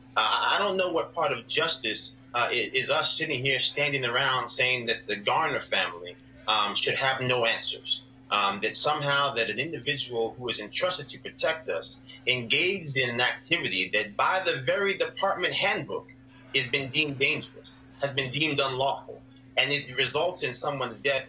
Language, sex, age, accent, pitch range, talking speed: English, male, 30-49, American, 130-160 Hz, 175 wpm